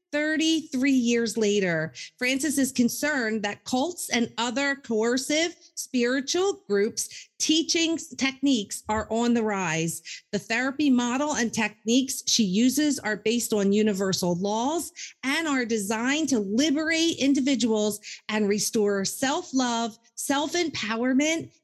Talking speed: 115 wpm